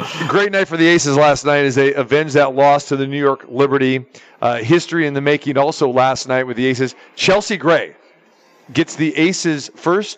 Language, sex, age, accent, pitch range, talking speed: English, male, 40-59, American, 130-150 Hz, 200 wpm